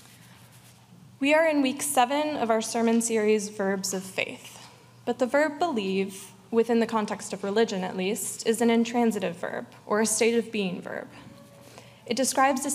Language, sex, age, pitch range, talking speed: English, female, 20-39, 200-240 Hz, 170 wpm